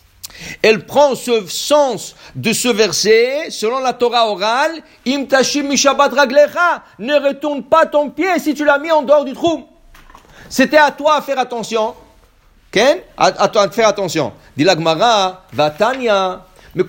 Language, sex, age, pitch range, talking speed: English, male, 50-69, 215-285 Hz, 130 wpm